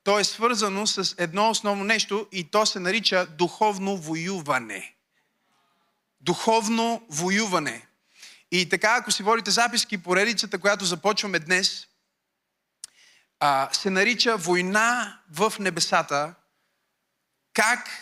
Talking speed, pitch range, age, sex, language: 105 wpm, 155-200 Hz, 30-49, male, Bulgarian